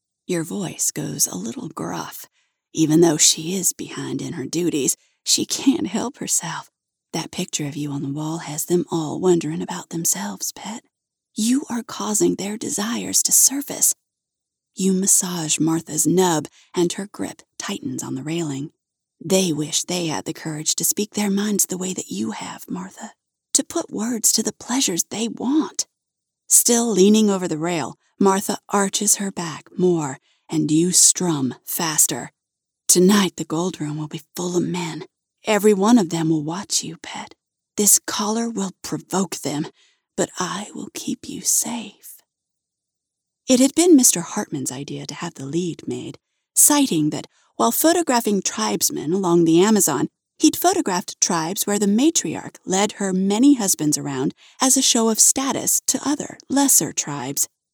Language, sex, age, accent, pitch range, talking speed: English, female, 30-49, American, 165-225 Hz, 160 wpm